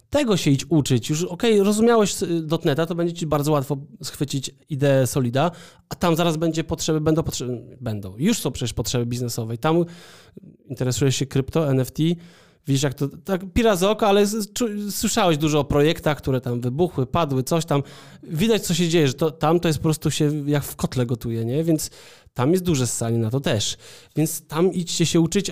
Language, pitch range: Polish, 135-170 Hz